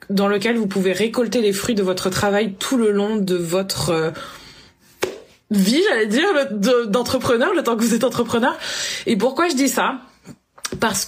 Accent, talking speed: French, 170 wpm